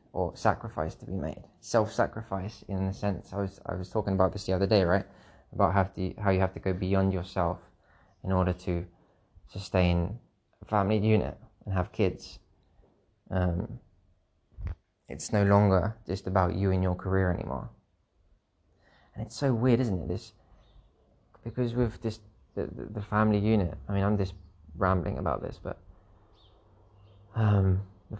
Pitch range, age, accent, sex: 90-105 Hz, 20-39, British, male